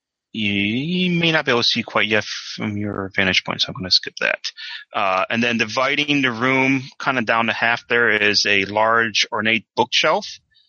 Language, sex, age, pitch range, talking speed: English, male, 30-49, 100-120 Hz, 210 wpm